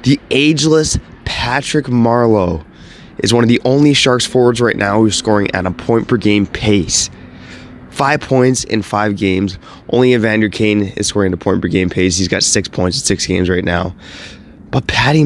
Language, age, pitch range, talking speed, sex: English, 20-39, 95-125 Hz, 175 wpm, male